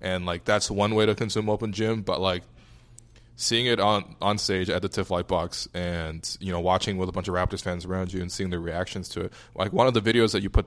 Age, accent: 20-39, American